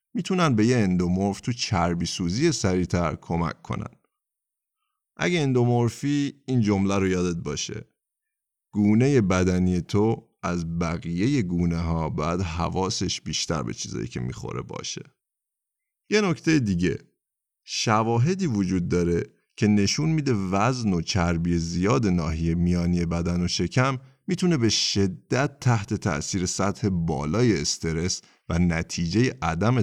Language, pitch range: Persian, 85-120 Hz